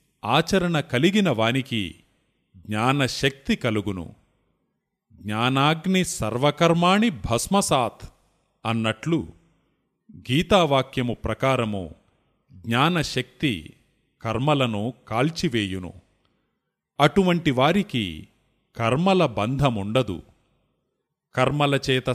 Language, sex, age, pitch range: Telugu, male, 30-49, 110-150 Hz